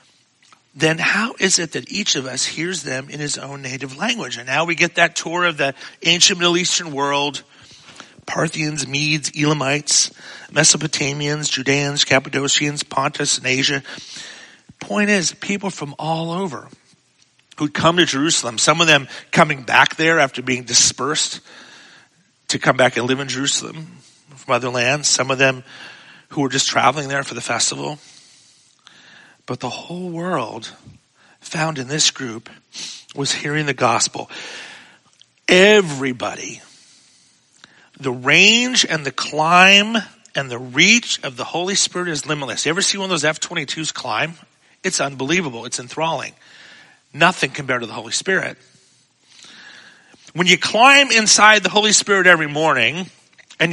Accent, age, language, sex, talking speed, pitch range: American, 40-59, English, male, 145 wpm, 135-180 Hz